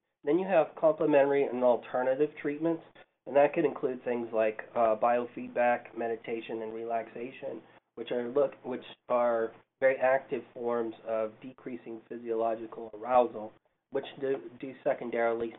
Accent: American